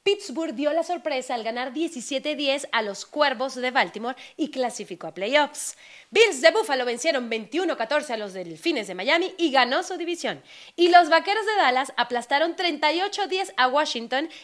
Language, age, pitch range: Spanish, 30-49, 245-330 Hz